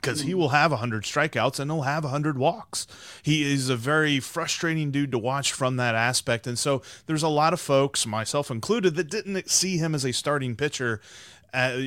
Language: English